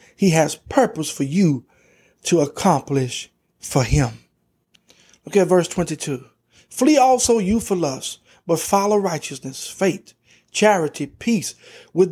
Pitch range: 155-230 Hz